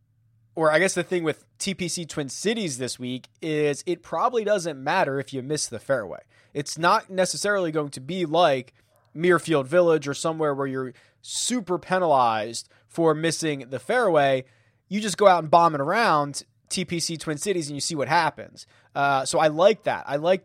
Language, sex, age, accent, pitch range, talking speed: English, male, 20-39, American, 130-175 Hz, 185 wpm